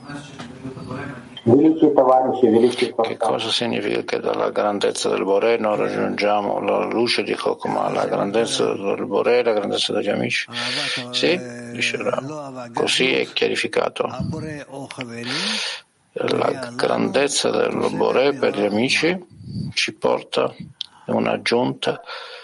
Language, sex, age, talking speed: Italian, male, 50-69, 100 wpm